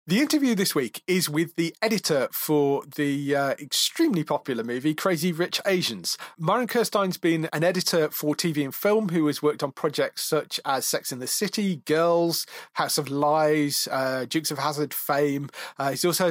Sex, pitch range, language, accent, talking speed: male, 140-165 Hz, English, British, 180 wpm